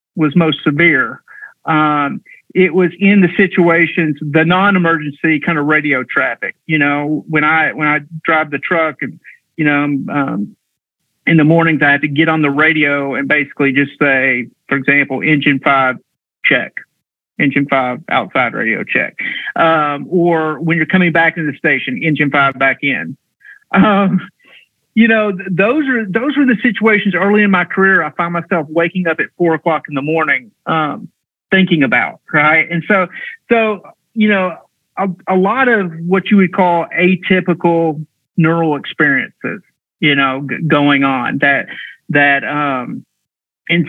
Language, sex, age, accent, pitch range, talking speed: English, male, 50-69, American, 150-185 Hz, 165 wpm